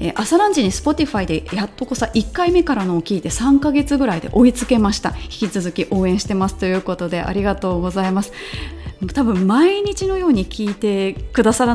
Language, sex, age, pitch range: Japanese, female, 30-49, 175-255 Hz